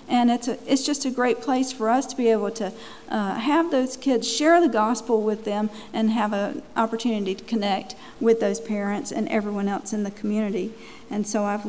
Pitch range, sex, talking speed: 215-260 Hz, female, 210 wpm